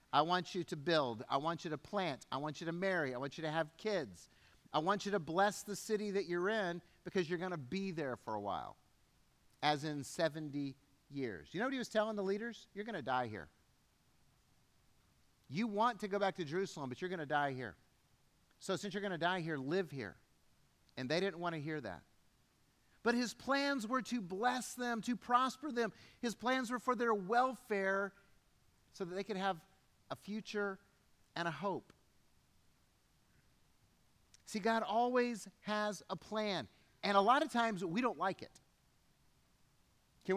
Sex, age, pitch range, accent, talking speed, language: male, 50-69, 155-215 Hz, American, 190 wpm, English